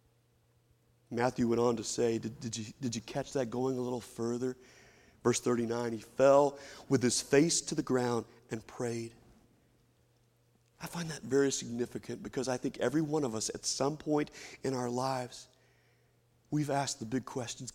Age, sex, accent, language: 40-59, male, American, English